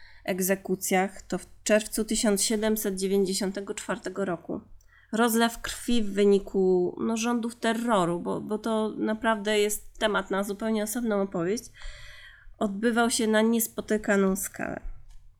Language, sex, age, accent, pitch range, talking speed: Polish, female, 30-49, native, 190-230 Hz, 105 wpm